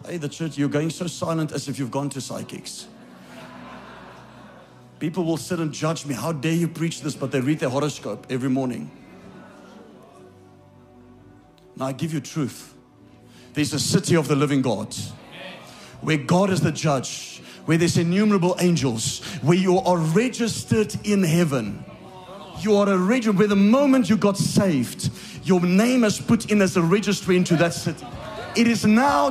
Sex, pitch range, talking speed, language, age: male, 150-225 Hz, 170 wpm, English, 40-59